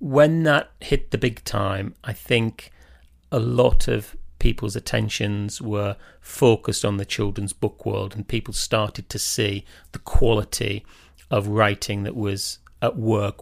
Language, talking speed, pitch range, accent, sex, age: English, 150 wpm, 100-120 Hz, British, male, 40-59